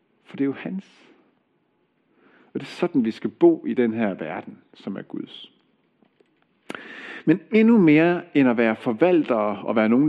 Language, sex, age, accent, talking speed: Danish, male, 50-69, native, 170 wpm